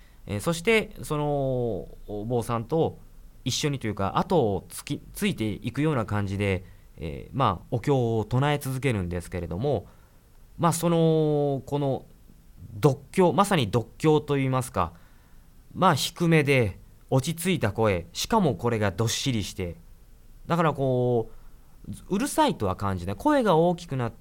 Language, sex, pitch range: Japanese, male, 100-155 Hz